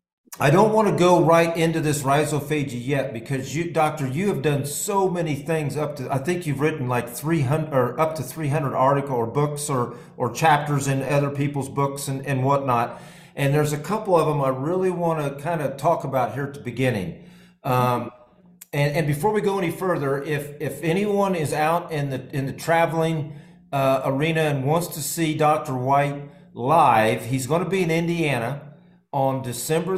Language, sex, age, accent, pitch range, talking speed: English, male, 50-69, American, 135-165 Hz, 195 wpm